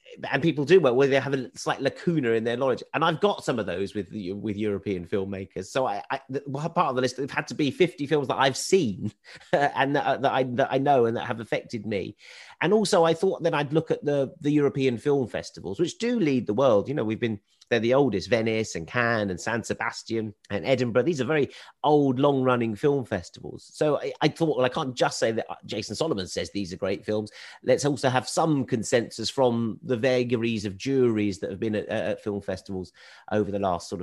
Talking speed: 230 wpm